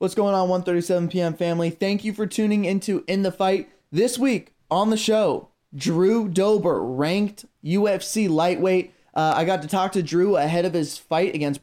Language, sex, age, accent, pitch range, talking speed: English, male, 20-39, American, 150-190 Hz, 185 wpm